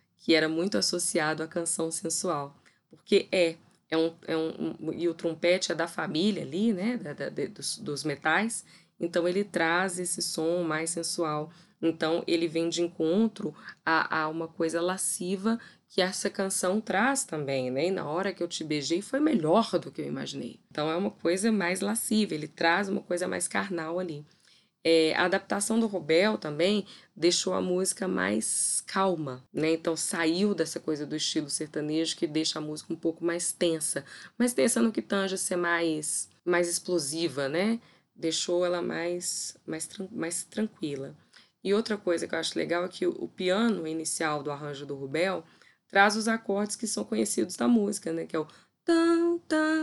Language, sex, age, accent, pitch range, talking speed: Portuguese, female, 10-29, Brazilian, 160-200 Hz, 180 wpm